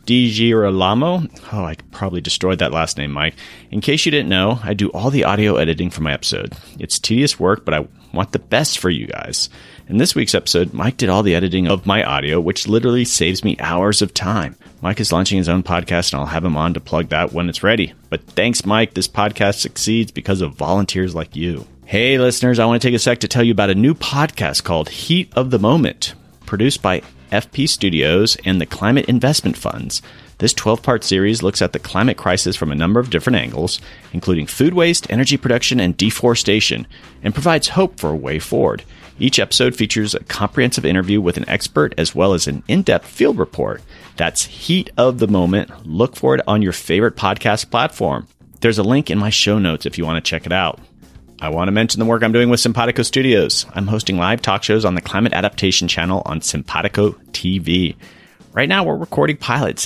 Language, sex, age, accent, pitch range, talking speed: English, male, 30-49, American, 90-120 Hz, 210 wpm